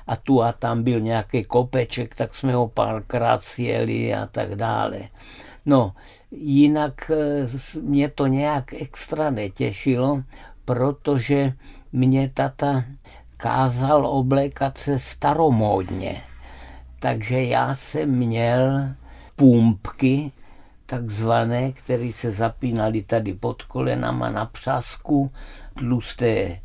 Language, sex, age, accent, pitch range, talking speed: Czech, male, 60-79, native, 115-140 Hz, 100 wpm